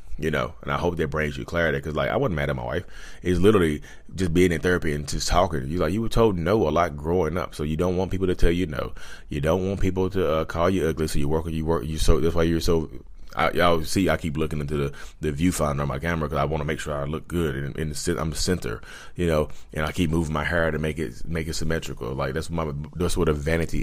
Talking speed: 290 wpm